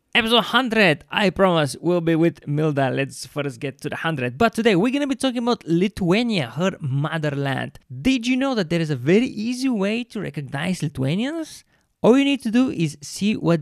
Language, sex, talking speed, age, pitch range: English, male, 205 wpm, 20-39, 140-215 Hz